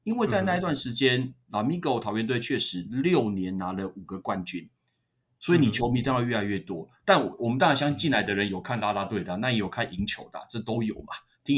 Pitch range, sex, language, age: 105-150 Hz, male, Chinese, 30-49